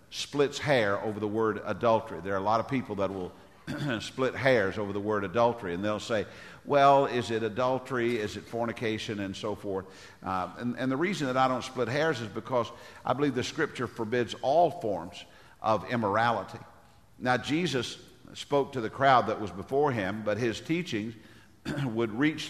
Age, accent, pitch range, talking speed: 50-69, American, 105-130 Hz, 185 wpm